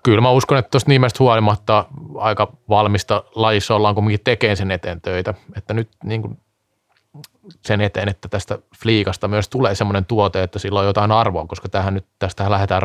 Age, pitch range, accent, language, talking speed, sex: 20-39, 100-120 Hz, native, Finnish, 180 wpm, male